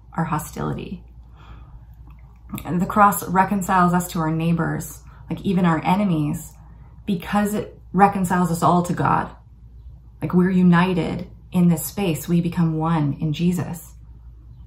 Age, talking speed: 20-39, 130 wpm